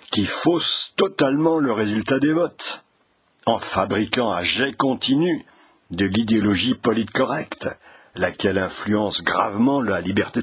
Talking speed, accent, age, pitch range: 120 wpm, French, 60-79, 100-125 Hz